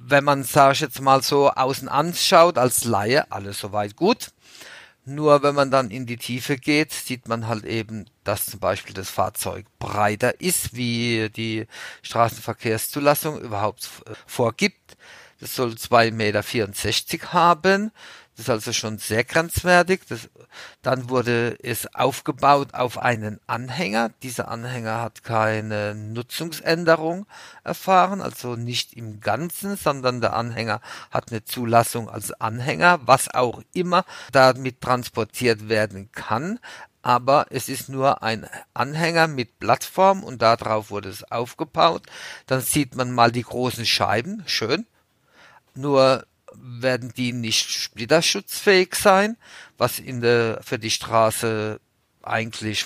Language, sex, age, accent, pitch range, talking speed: German, male, 50-69, German, 110-145 Hz, 130 wpm